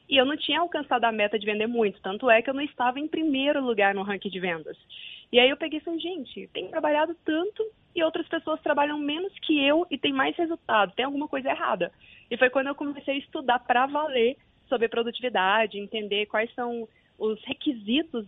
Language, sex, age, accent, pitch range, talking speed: Portuguese, female, 20-39, Brazilian, 220-295 Hz, 205 wpm